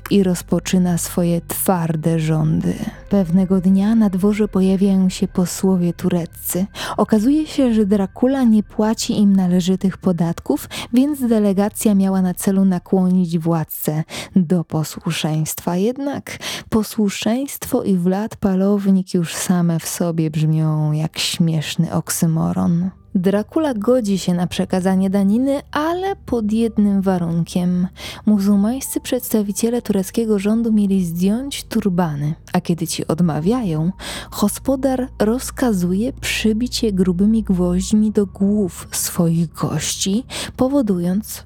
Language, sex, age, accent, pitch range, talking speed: Polish, female, 20-39, native, 170-210 Hz, 110 wpm